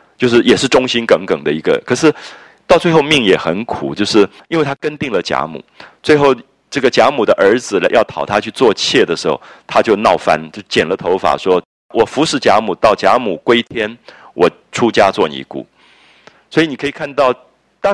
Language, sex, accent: Japanese, male, Chinese